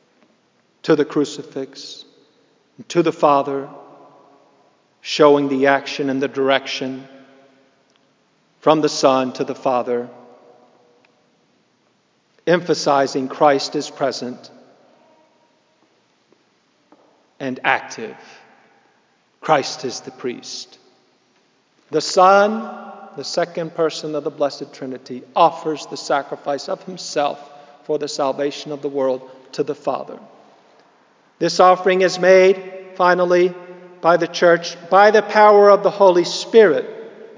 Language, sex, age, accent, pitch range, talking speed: English, male, 50-69, American, 145-190 Hz, 105 wpm